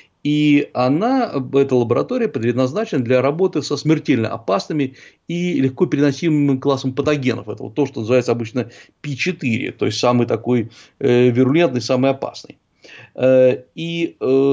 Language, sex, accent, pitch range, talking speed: Russian, male, native, 120-155 Hz, 130 wpm